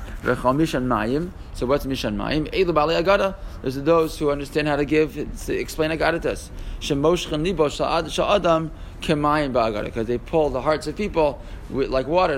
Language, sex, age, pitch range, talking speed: English, male, 20-39, 115-155 Hz, 115 wpm